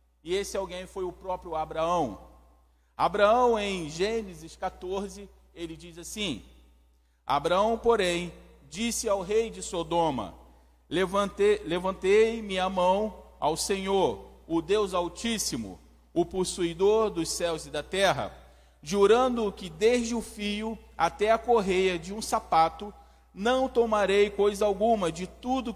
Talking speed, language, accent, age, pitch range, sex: 125 wpm, Portuguese, Brazilian, 40-59, 160-210 Hz, male